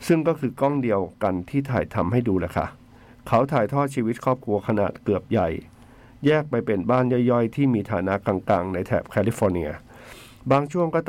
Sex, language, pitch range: male, Thai, 105-135 Hz